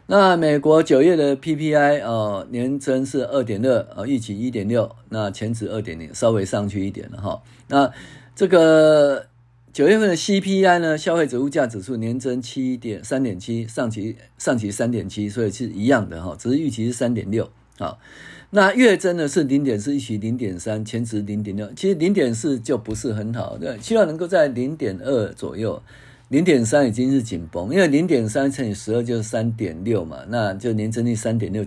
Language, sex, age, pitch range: Chinese, male, 50-69, 110-145 Hz